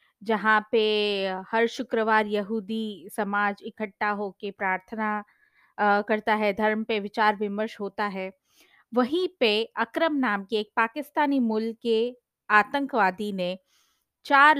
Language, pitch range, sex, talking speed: Hindi, 200-245 Hz, female, 120 wpm